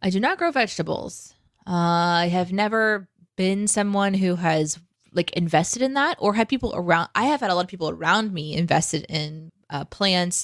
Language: English